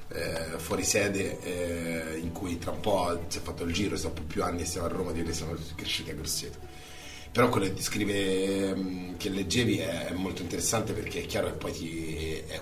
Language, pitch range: Italian, 80-95 Hz